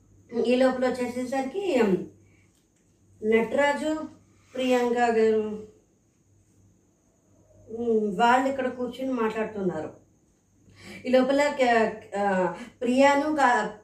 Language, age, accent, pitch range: Telugu, 20-39, native, 225-260 Hz